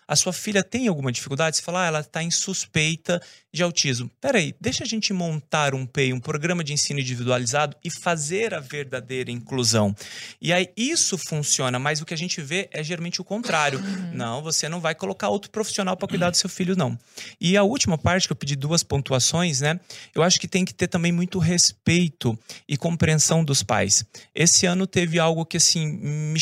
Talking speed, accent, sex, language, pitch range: 200 wpm, Brazilian, male, Portuguese, 135-175 Hz